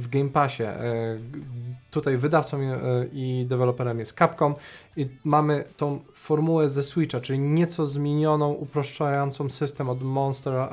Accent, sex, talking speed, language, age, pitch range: native, male, 125 wpm, Polish, 20-39, 125-145 Hz